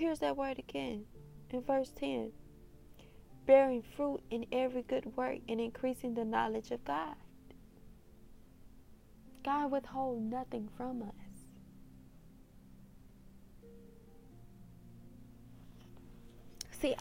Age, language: 20-39, English